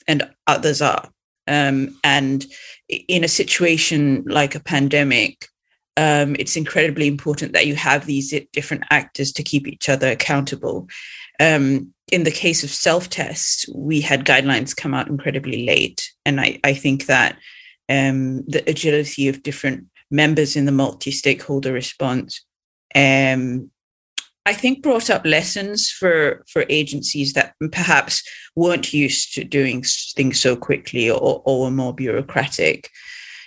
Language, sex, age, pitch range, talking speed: English, female, 30-49, 135-155 Hz, 135 wpm